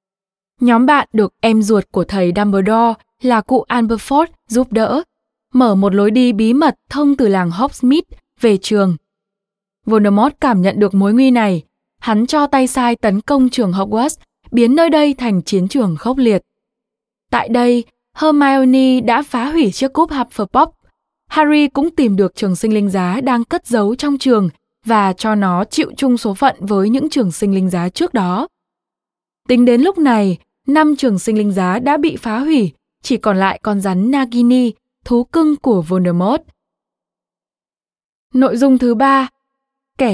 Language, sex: Vietnamese, female